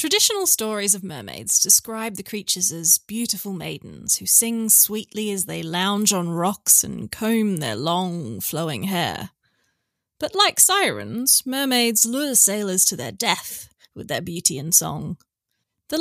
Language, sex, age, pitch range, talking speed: English, female, 30-49, 190-245 Hz, 145 wpm